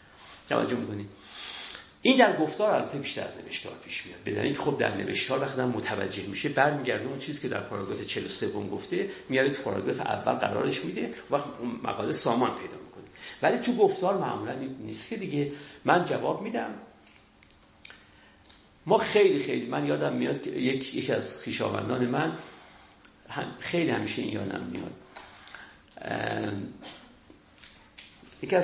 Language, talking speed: Persian, 130 wpm